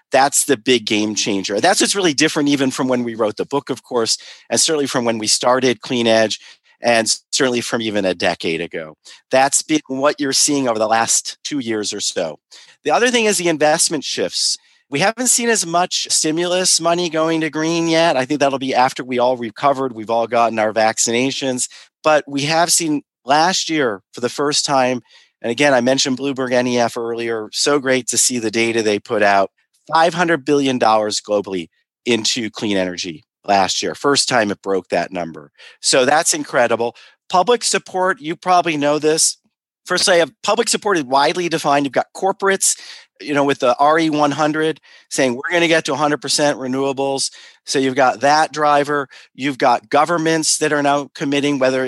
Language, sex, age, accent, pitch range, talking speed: English, male, 40-59, American, 115-160 Hz, 185 wpm